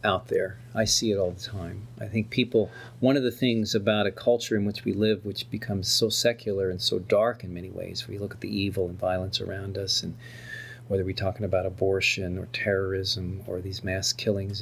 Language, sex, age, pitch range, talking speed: English, male, 40-59, 100-120 Hz, 220 wpm